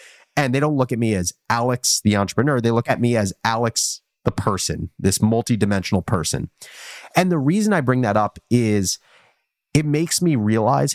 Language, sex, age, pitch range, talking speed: English, male, 30-49, 100-130 Hz, 180 wpm